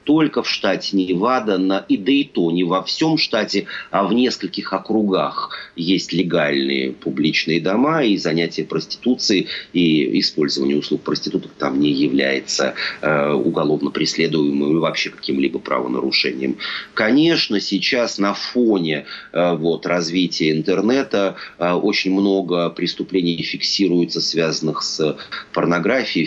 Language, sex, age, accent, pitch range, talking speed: Russian, male, 30-49, native, 80-100 Hz, 110 wpm